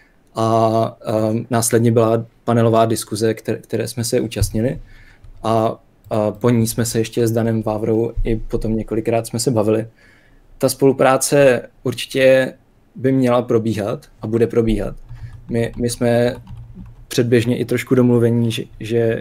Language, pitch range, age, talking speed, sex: Czech, 110-120 Hz, 20-39, 135 wpm, male